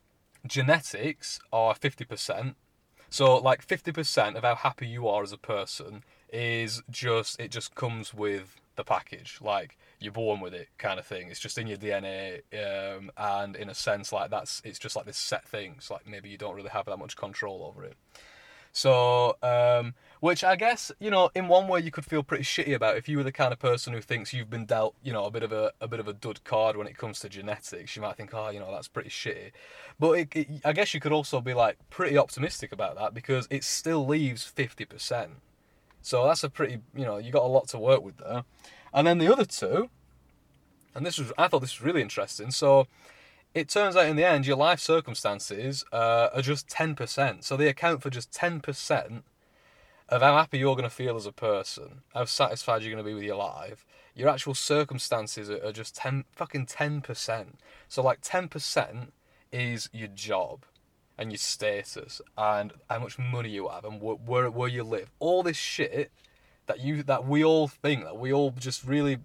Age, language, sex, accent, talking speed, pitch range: 20-39, English, male, British, 215 wpm, 110-145 Hz